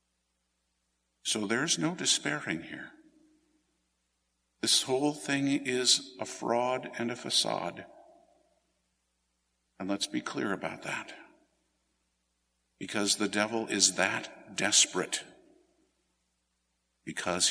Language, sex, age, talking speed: English, male, 50-69, 95 wpm